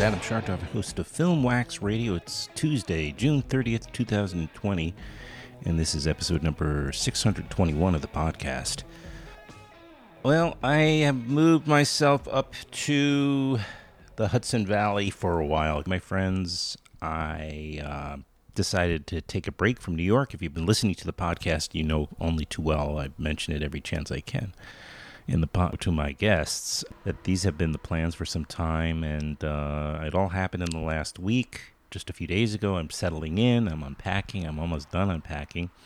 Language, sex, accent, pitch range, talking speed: English, male, American, 80-110 Hz, 170 wpm